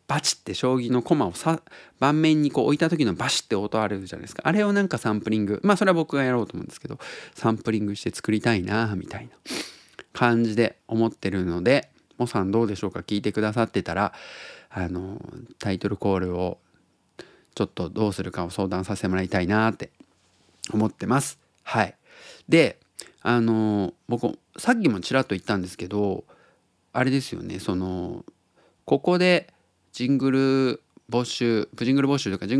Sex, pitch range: male, 95-135 Hz